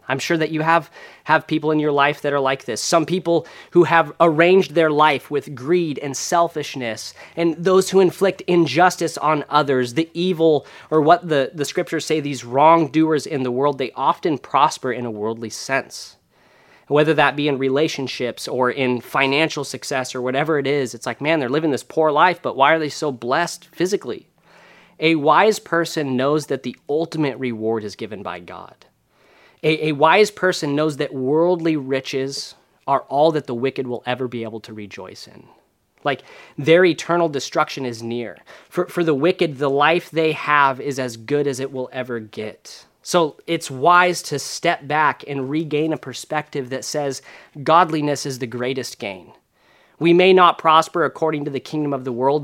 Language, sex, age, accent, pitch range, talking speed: English, male, 30-49, American, 130-165 Hz, 185 wpm